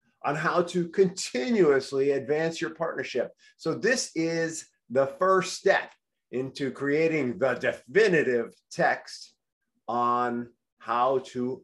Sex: male